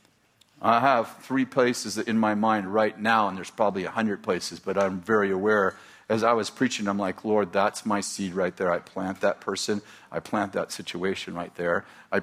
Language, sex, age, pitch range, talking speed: English, male, 50-69, 100-115 Hz, 200 wpm